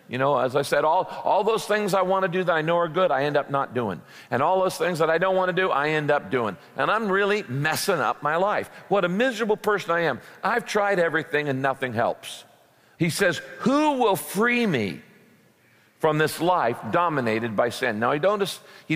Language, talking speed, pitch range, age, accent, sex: English, 230 wpm, 125-175 Hz, 50-69, American, male